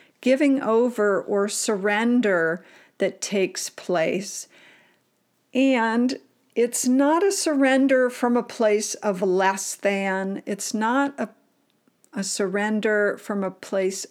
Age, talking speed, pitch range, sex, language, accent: 50-69, 110 wpm, 200-255 Hz, female, English, American